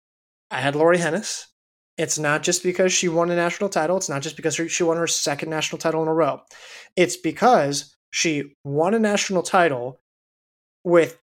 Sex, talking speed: male, 180 wpm